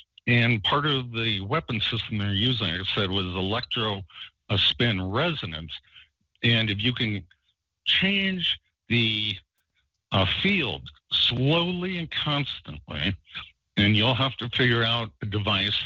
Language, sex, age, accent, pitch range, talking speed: English, male, 60-79, American, 95-125 Hz, 130 wpm